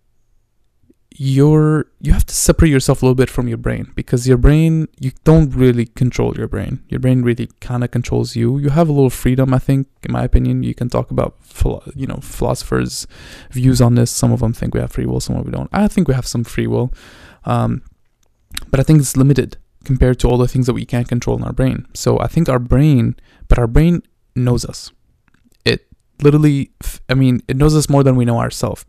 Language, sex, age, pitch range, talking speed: English, male, 20-39, 115-135 Hz, 225 wpm